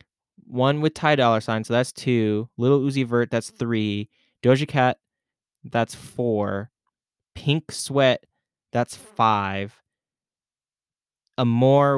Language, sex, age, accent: English, male, 10-29, American